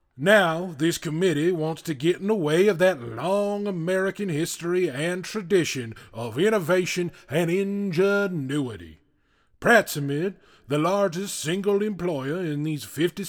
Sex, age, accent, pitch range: male, 30-49, American, 140-185 Hz